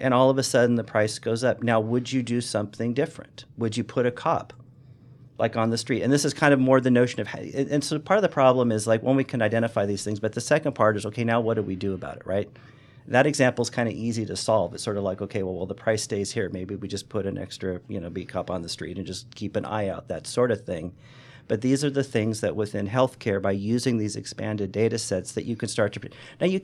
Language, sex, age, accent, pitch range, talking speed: English, male, 40-59, American, 100-130 Hz, 285 wpm